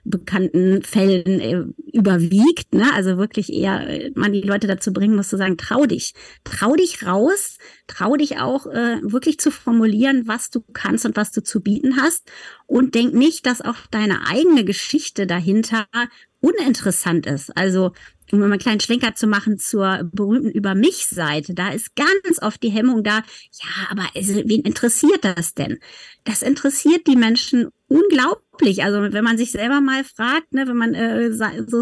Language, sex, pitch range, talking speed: German, female, 195-255 Hz, 165 wpm